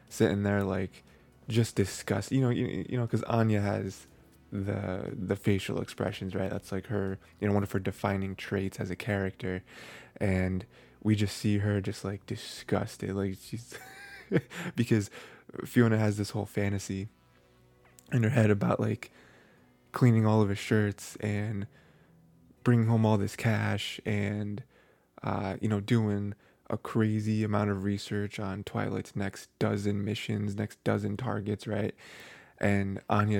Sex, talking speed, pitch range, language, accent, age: male, 150 wpm, 95-110 Hz, English, American, 20-39